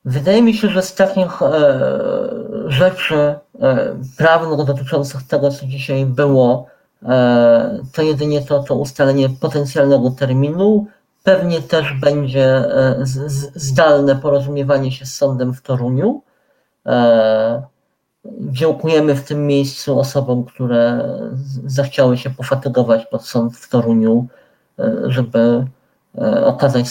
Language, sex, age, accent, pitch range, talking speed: Polish, male, 40-59, native, 125-160 Hz, 100 wpm